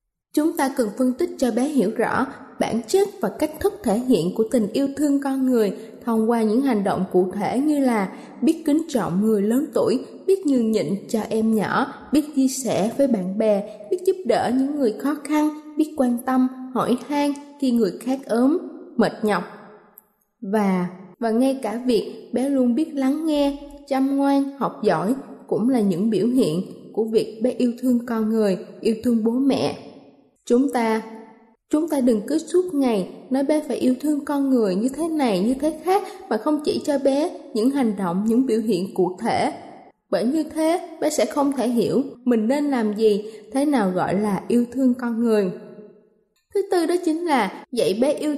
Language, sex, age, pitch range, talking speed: Vietnamese, female, 20-39, 220-290 Hz, 195 wpm